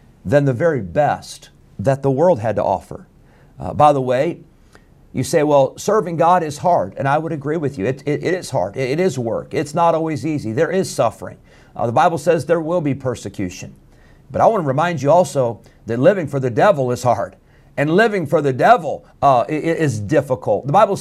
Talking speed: 215 wpm